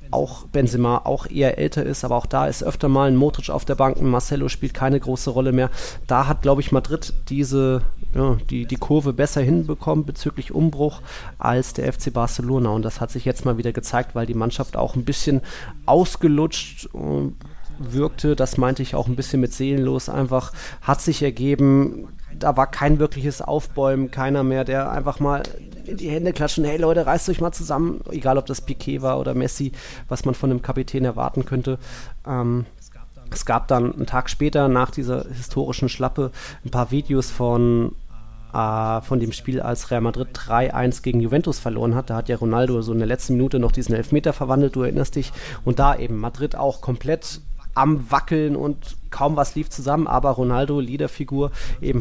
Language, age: German, 20-39